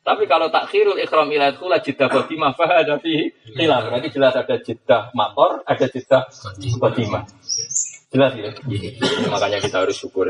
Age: 20-39